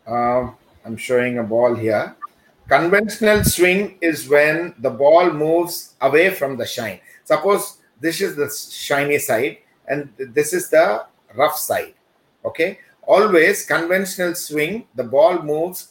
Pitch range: 135-190 Hz